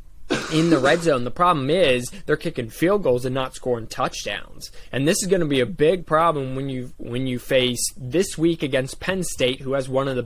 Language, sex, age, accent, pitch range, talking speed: English, male, 20-39, American, 130-165 Hz, 230 wpm